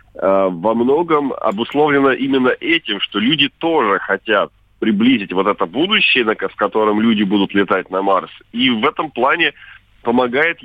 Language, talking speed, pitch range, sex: Russian, 140 wpm, 105-140 Hz, male